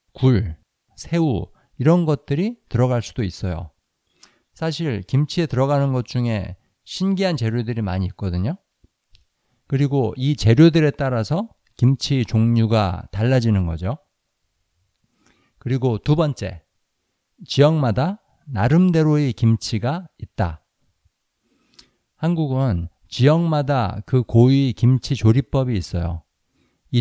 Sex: male